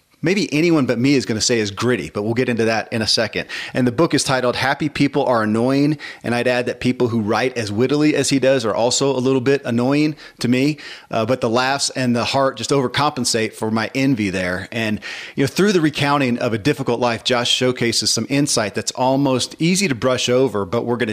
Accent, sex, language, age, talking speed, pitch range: American, male, English, 40-59, 235 wpm, 115-140 Hz